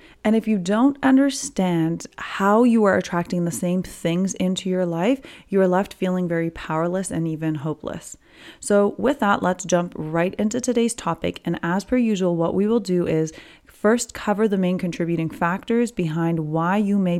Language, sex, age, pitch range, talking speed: English, female, 30-49, 165-210 Hz, 180 wpm